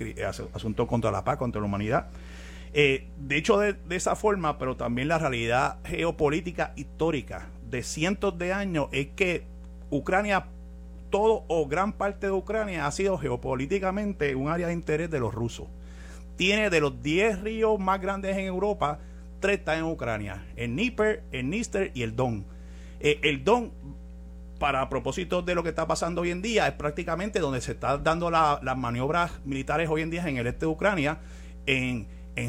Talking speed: 180 wpm